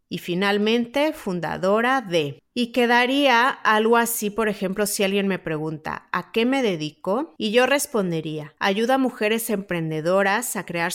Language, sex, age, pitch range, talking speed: Spanish, female, 30-49, 175-230 Hz, 150 wpm